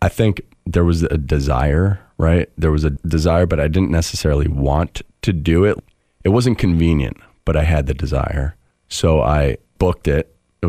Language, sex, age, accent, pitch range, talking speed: English, male, 30-49, American, 75-90 Hz, 180 wpm